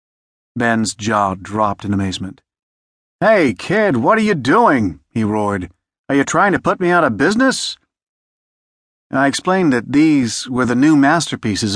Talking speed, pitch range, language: 155 wpm, 100-140 Hz, English